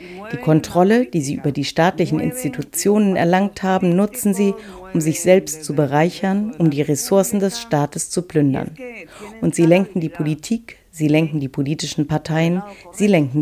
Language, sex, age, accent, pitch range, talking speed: German, female, 40-59, German, 155-205 Hz, 160 wpm